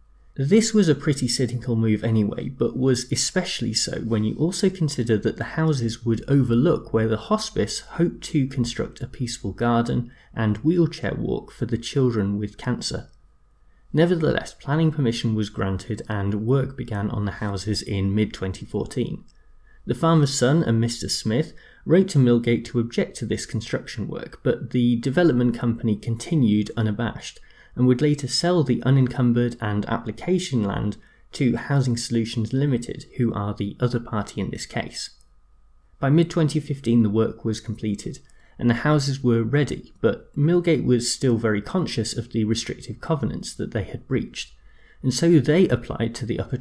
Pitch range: 110-140 Hz